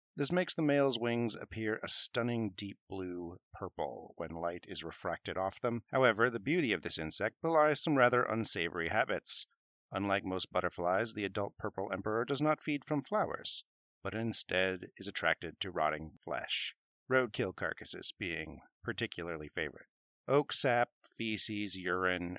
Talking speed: 150 wpm